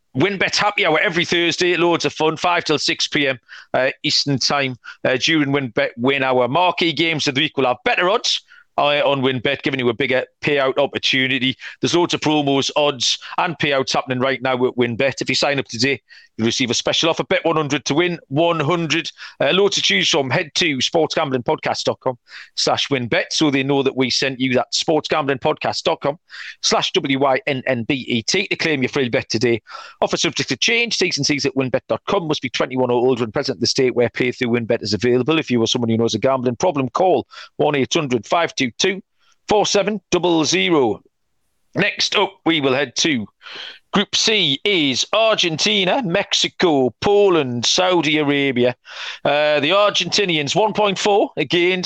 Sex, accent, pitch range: male, British, 130-170 Hz